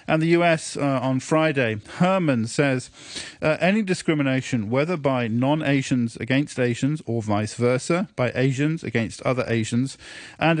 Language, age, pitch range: English, 40-59, 120-145 Hz